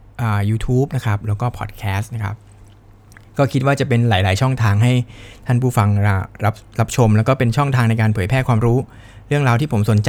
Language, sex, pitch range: Thai, male, 105-125 Hz